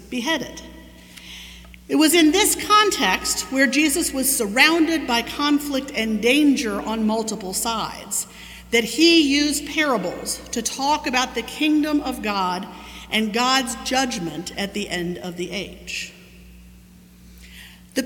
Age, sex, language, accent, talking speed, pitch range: 50-69, female, English, American, 125 wpm, 210-305 Hz